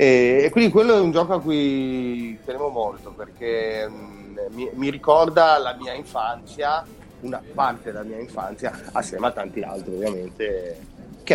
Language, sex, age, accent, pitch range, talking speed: Italian, male, 30-49, native, 115-170 Hz, 145 wpm